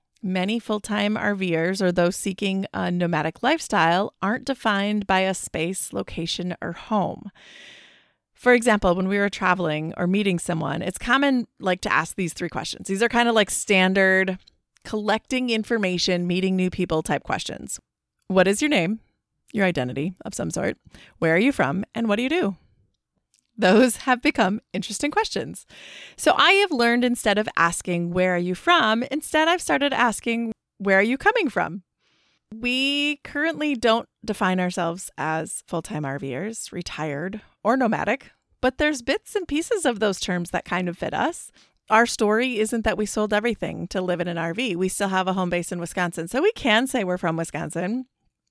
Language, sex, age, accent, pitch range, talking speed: English, female, 30-49, American, 180-235 Hz, 175 wpm